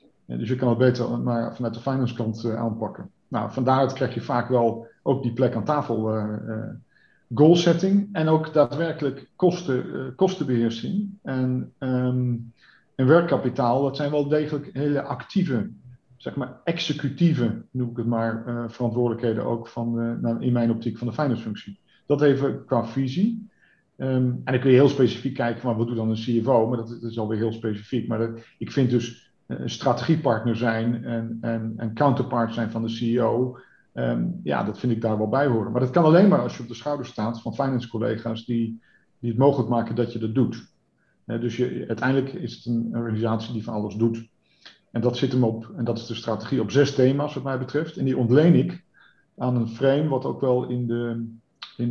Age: 50-69